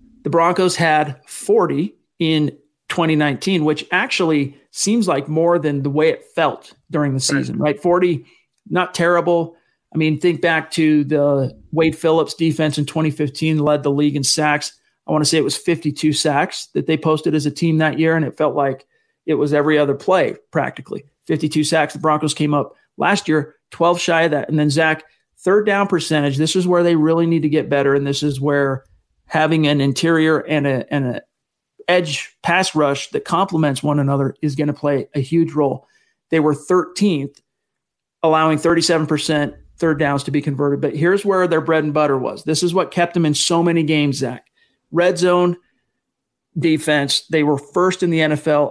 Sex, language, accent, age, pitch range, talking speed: male, English, American, 40-59, 145-170 Hz, 190 wpm